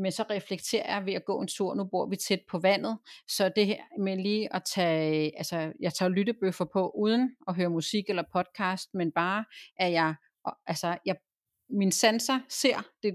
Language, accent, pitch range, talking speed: Danish, native, 165-205 Hz, 190 wpm